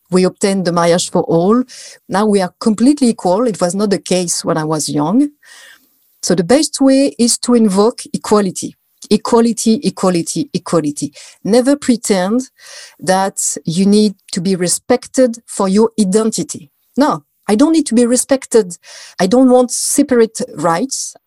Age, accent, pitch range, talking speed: 40-59, French, 185-250 Hz, 150 wpm